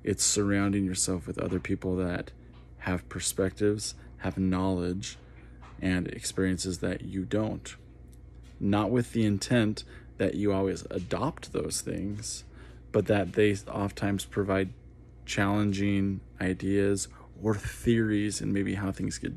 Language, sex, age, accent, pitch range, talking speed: English, male, 20-39, American, 65-105 Hz, 125 wpm